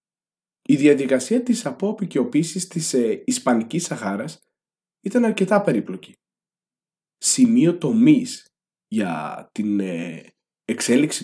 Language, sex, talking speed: Greek, male, 90 wpm